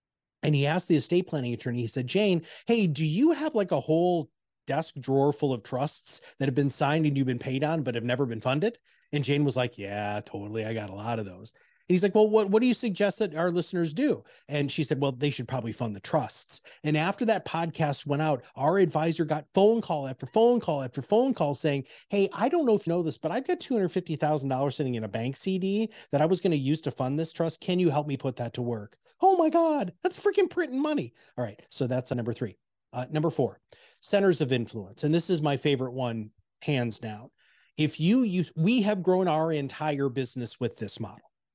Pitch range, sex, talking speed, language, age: 125-175 Hz, male, 235 wpm, English, 30-49